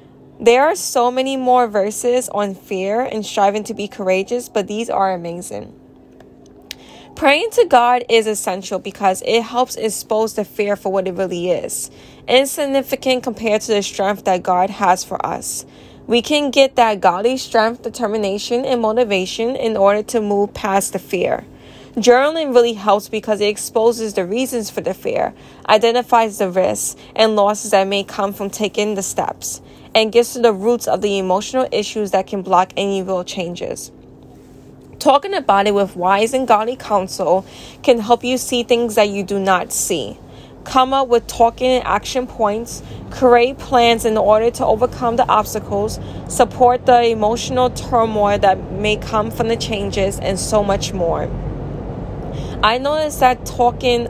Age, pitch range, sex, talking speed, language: 20-39, 200-245 Hz, female, 165 wpm, English